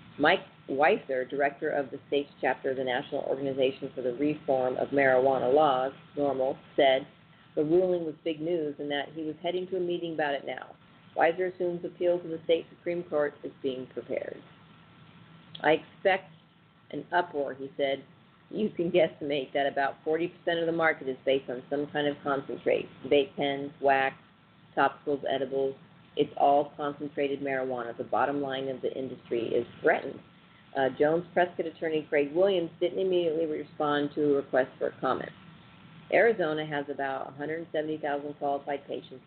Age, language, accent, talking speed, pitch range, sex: 40-59, English, American, 165 wpm, 140-170 Hz, female